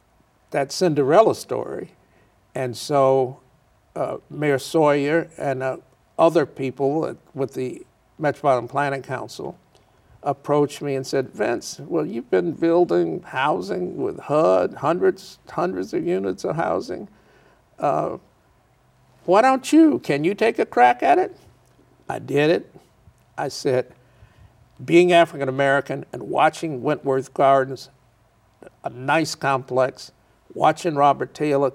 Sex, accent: male, American